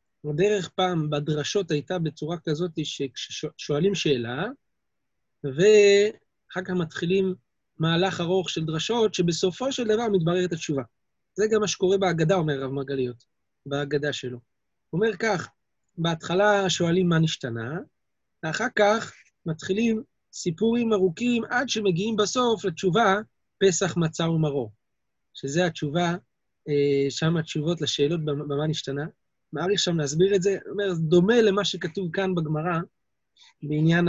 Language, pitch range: Hebrew, 155-195 Hz